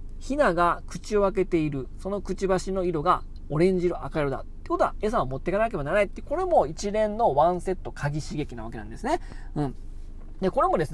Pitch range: 140-200 Hz